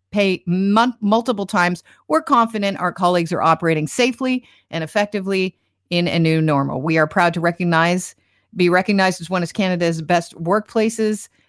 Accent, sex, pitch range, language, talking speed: American, female, 155-215 Hz, English, 145 wpm